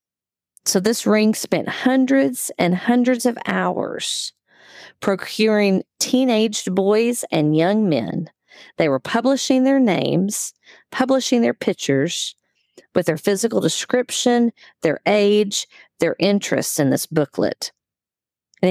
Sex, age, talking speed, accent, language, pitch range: female, 40-59, 110 wpm, American, English, 170-220 Hz